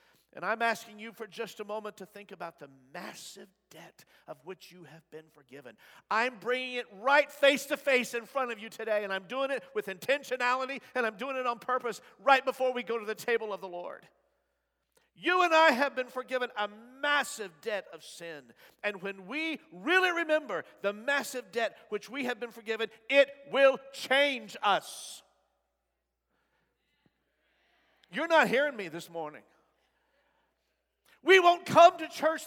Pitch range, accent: 215-285 Hz, American